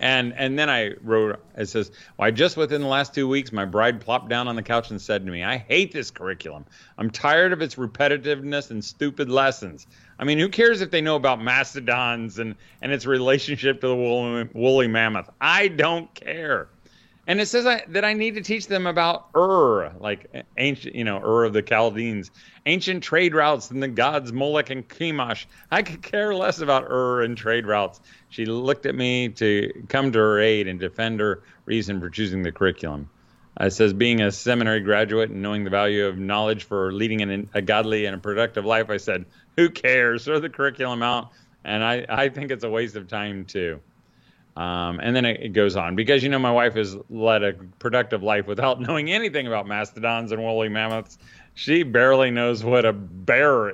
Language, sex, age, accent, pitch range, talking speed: English, male, 40-59, American, 105-140 Hz, 200 wpm